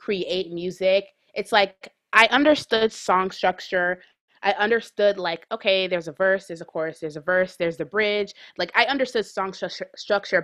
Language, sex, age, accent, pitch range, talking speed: English, female, 20-39, American, 175-215 Hz, 165 wpm